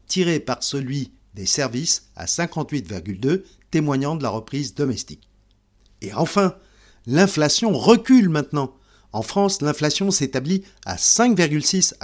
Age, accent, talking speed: 50-69, French, 115 wpm